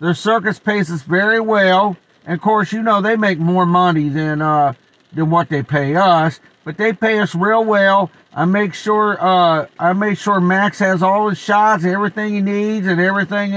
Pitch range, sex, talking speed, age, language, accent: 175-200 Hz, male, 200 wpm, 50-69, English, American